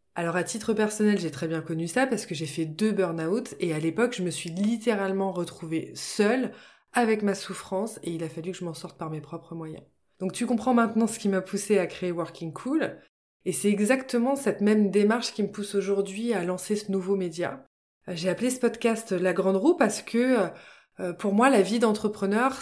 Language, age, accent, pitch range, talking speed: French, 20-39, French, 185-230 Hz, 210 wpm